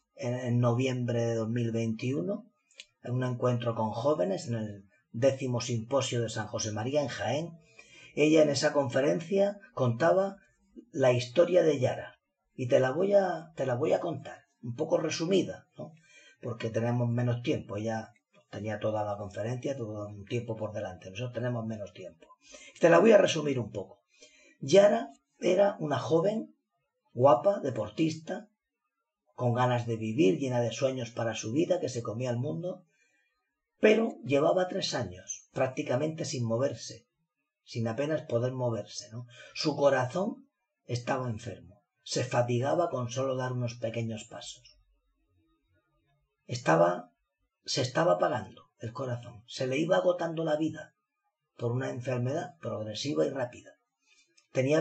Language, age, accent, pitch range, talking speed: Spanish, 40-59, Spanish, 115-160 Hz, 145 wpm